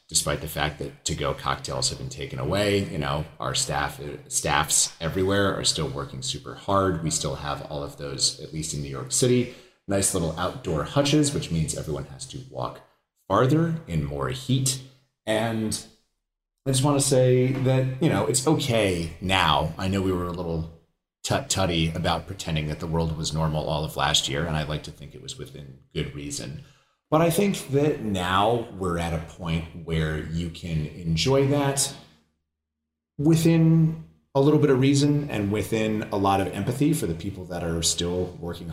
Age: 30-49